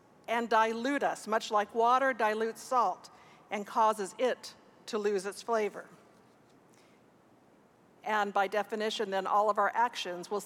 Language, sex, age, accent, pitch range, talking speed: English, female, 50-69, American, 210-255 Hz, 140 wpm